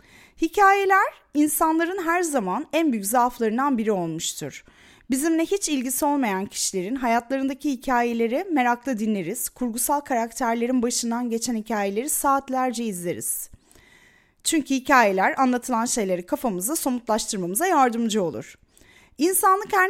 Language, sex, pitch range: Turkish, female, 220-300 Hz